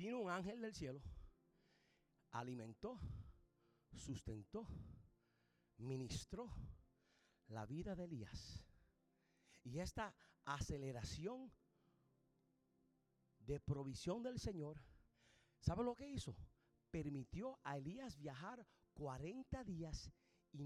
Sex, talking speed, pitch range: male, 85 wpm, 130-220 Hz